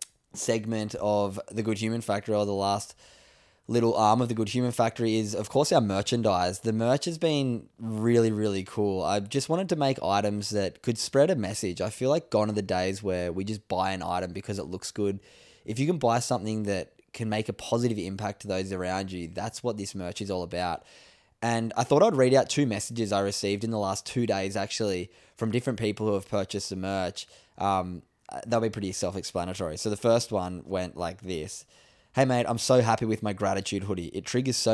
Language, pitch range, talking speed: English, 95-115 Hz, 220 wpm